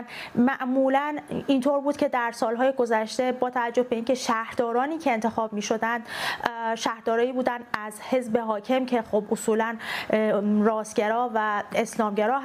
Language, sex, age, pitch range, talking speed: Persian, female, 30-49, 230-270 Hz, 130 wpm